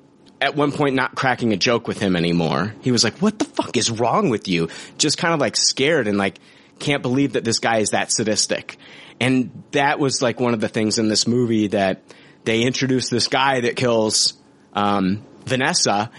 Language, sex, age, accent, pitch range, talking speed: English, male, 30-49, American, 110-155 Hz, 205 wpm